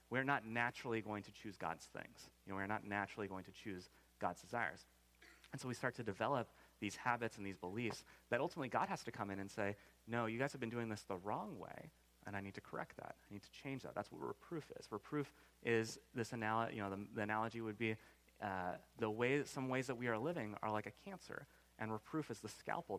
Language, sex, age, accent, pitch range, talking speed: English, male, 30-49, American, 100-125 Hz, 240 wpm